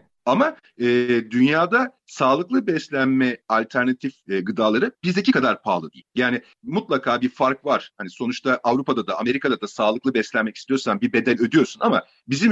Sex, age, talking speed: male, 40-59, 150 wpm